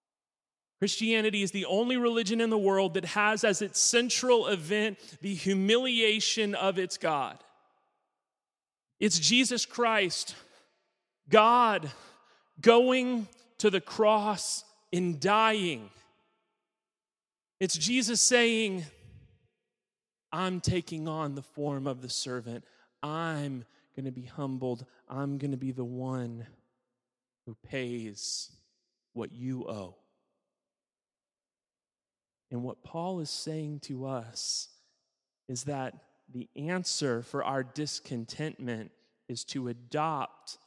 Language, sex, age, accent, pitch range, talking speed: English, male, 30-49, American, 125-195 Hz, 110 wpm